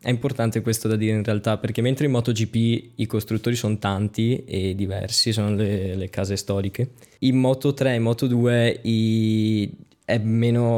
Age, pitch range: 10-29, 110-125 Hz